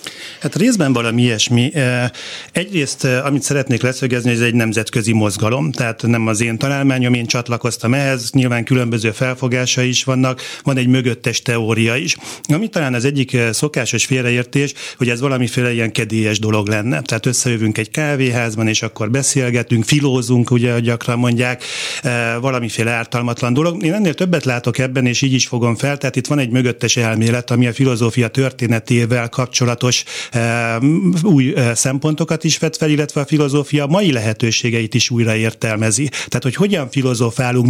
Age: 40-59